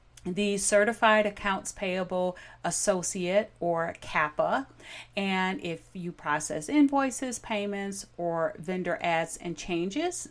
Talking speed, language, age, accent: 105 wpm, English, 40-59, American